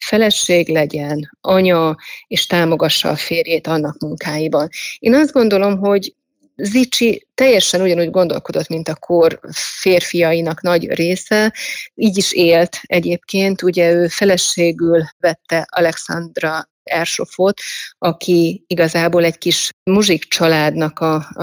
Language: Hungarian